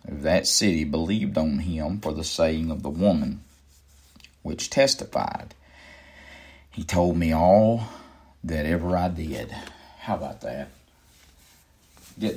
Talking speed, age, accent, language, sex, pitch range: 120 wpm, 50-69, American, English, male, 80-100 Hz